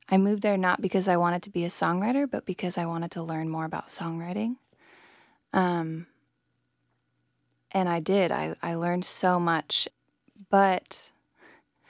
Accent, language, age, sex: American, English, 20-39, female